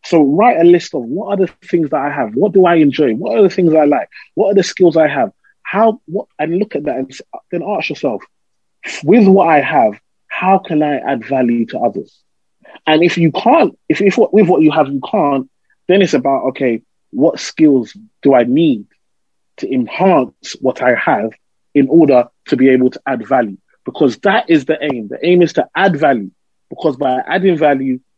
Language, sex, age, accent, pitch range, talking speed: English, male, 30-49, British, 130-180 Hz, 210 wpm